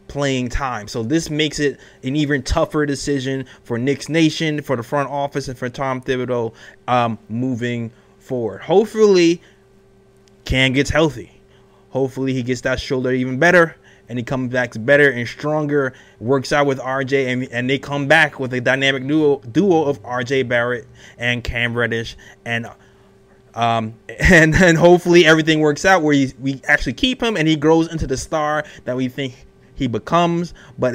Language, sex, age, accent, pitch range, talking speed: English, male, 20-39, American, 130-160 Hz, 170 wpm